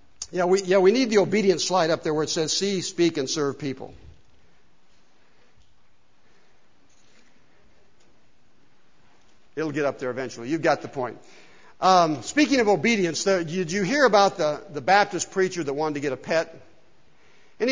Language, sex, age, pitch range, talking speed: English, male, 60-79, 165-210 Hz, 160 wpm